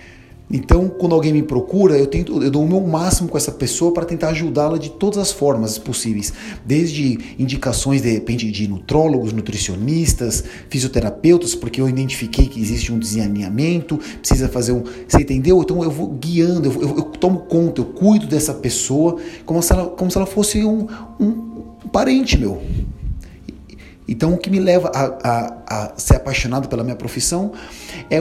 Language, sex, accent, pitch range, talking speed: Portuguese, male, Brazilian, 120-160 Hz, 170 wpm